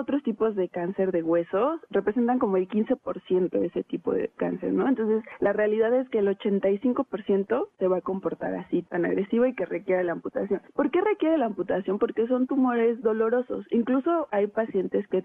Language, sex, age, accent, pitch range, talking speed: Spanish, female, 30-49, Mexican, 190-225 Hz, 195 wpm